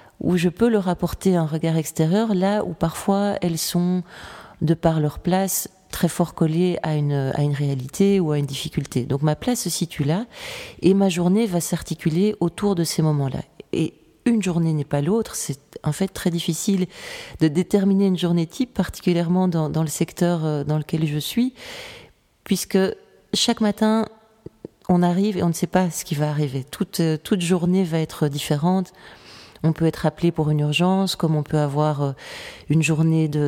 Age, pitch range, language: 30-49, 145-185 Hz, French